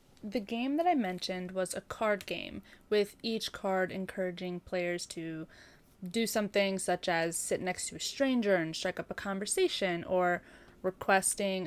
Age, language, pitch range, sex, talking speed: 20-39, English, 185-230 Hz, female, 160 wpm